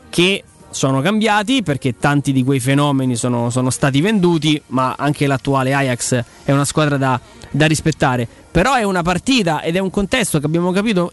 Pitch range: 130-185 Hz